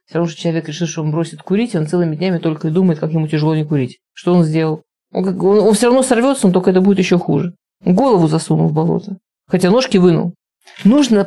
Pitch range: 175-220 Hz